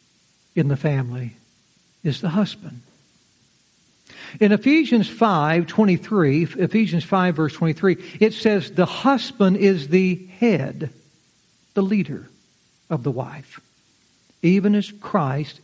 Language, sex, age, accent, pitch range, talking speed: English, male, 60-79, American, 150-210 Hz, 105 wpm